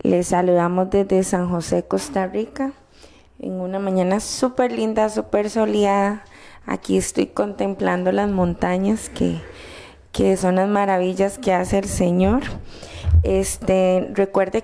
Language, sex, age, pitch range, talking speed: Spanish, female, 20-39, 175-205 Hz, 125 wpm